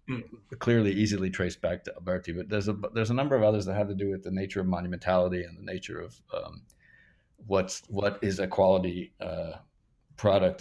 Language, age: English, 50-69